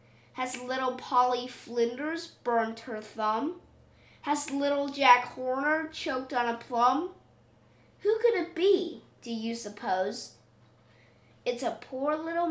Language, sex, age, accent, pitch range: Chinese, female, 20-39, American, 225-315 Hz